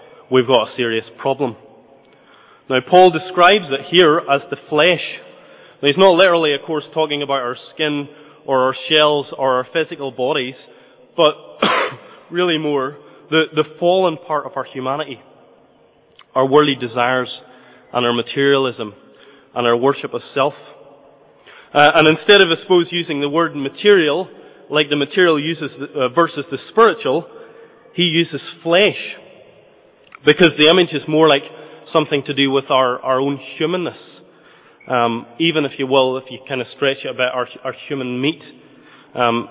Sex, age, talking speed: male, 20-39, 160 wpm